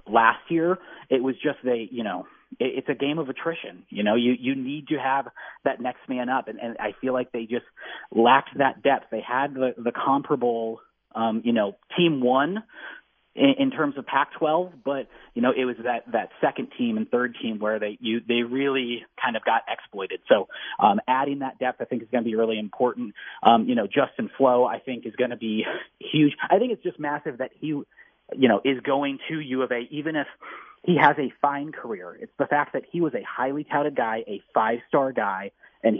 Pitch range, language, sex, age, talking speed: 120-145 Hz, English, male, 30-49, 220 wpm